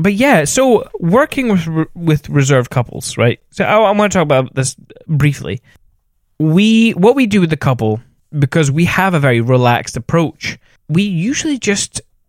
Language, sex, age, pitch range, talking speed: English, male, 10-29, 120-165 Hz, 170 wpm